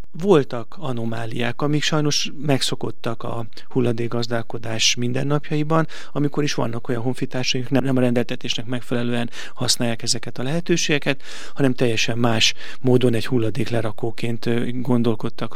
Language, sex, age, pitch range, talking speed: Hungarian, male, 30-49, 120-140 Hz, 110 wpm